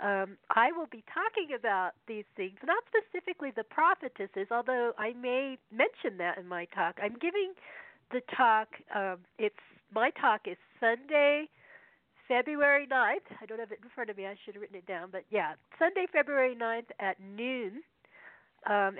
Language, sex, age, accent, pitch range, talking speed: English, female, 50-69, American, 195-255 Hz, 170 wpm